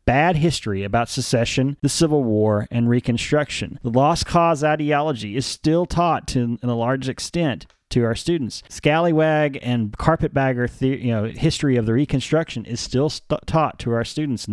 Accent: American